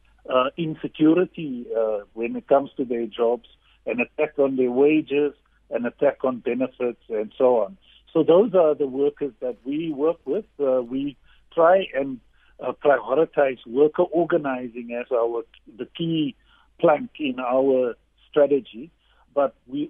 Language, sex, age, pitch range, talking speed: English, male, 50-69, 125-155 Hz, 145 wpm